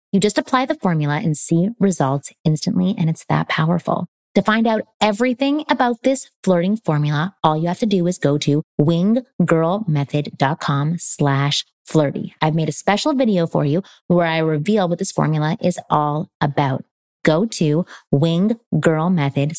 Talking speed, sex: 155 wpm, female